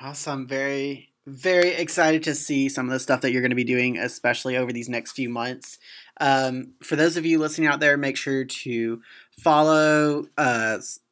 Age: 30-49